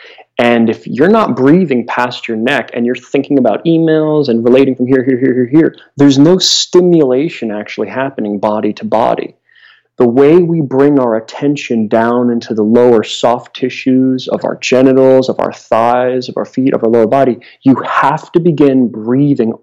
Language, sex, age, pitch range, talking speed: English, male, 30-49, 115-135 Hz, 180 wpm